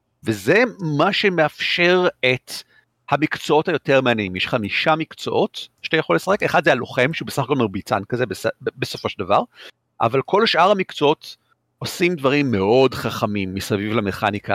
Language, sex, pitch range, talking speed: Hebrew, male, 110-165 Hz, 145 wpm